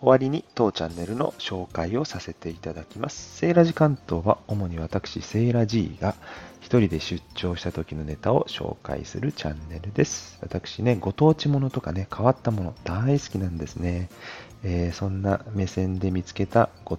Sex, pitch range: male, 90-130 Hz